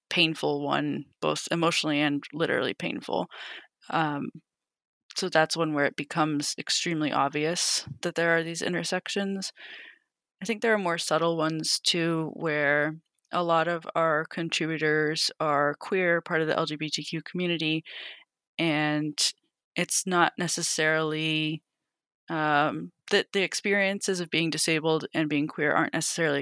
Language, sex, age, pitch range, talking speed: English, female, 20-39, 150-175 Hz, 130 wpm